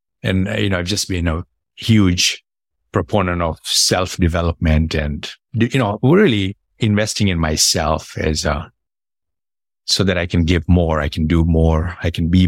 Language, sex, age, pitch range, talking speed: English, male, 50-69, 85-115 Hz, 165 wpm